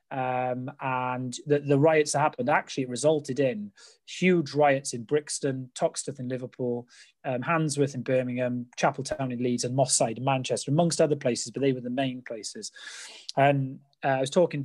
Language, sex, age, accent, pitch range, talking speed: English, male, 30-49, British, 125-150 Hz, 175 wpm